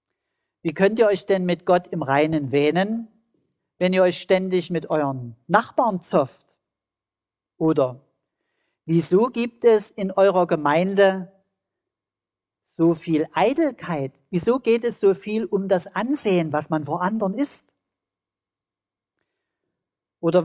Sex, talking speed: male, 125 wpm